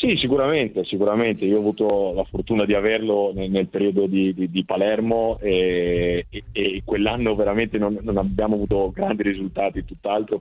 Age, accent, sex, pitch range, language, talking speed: 30-49, native, male, 90-105 Hz, Italian, 165 wpm